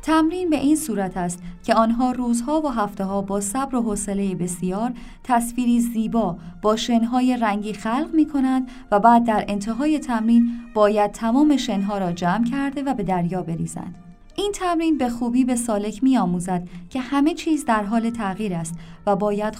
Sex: female